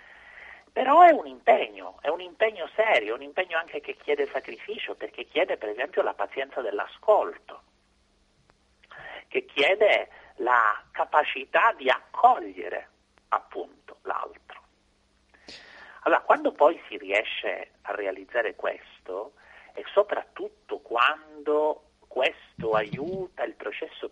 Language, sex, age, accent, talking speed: Italian, male, 50-69, native, 110 wpm